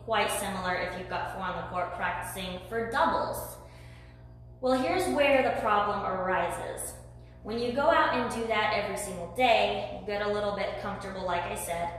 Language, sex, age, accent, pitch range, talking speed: English, female, 20-39, American, 180-240 Hz, 185 wpm